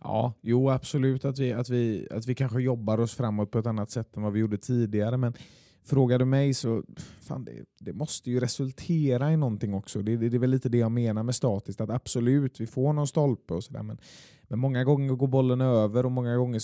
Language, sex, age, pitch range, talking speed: Swedish, male, 20-39, 115-135 Hz, 240 wpm